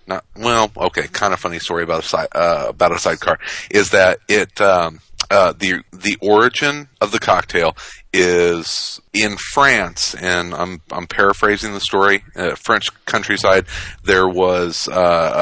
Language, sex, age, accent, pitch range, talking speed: English, male, 40-59, American, 85-105 Hz, 155 wpm